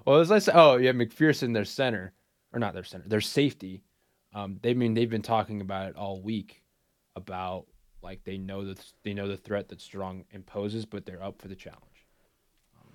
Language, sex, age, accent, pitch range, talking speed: English, male, 20-39, American, 90-110 Hz, 205 wpm